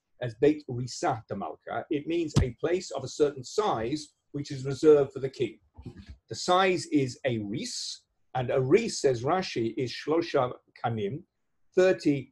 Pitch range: 130-165 Hz